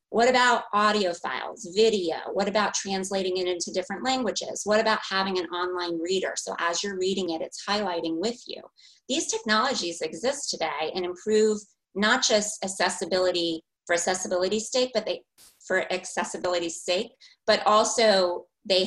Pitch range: 170-215 Hz